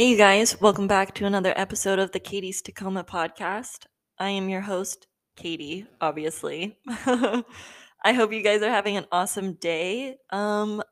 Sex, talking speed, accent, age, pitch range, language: female, 160 wpm, American, 20-39, 175-220 Hz, English